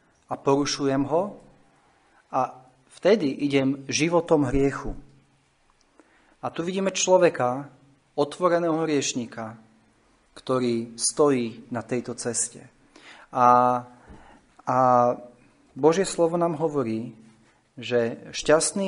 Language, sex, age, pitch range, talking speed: Slovak, male, 40-59, 120-150 Hz, 85 wpm